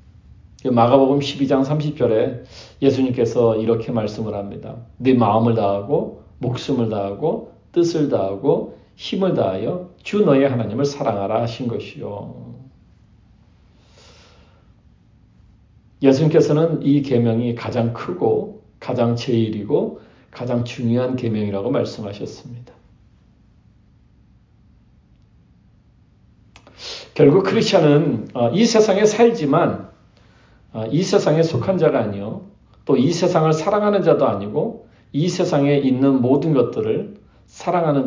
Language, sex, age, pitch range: Korean, male, 40-59, 110-145 Hz